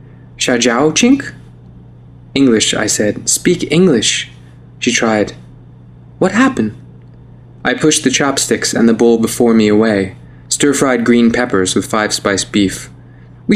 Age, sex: 20-39, male